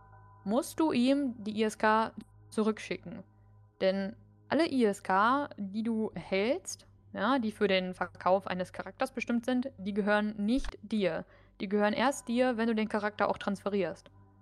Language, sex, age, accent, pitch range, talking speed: German, female, 10-29, German, 185-220 Hz, 145 wpm